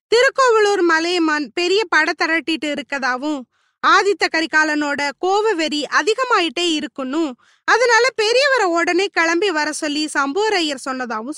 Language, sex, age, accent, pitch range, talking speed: Tamil, female, 20-39, native, 285-395 Hz, 105 wpm